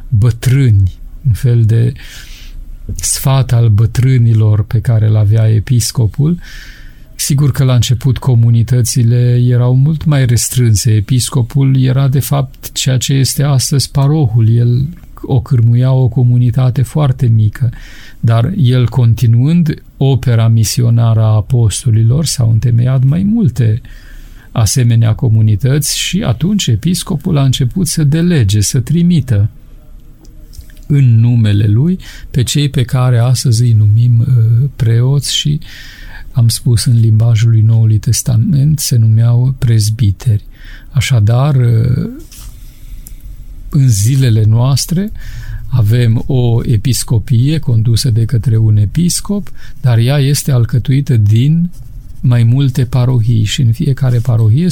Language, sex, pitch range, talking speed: Romanian, male, 115-135 Hz, 115 wpm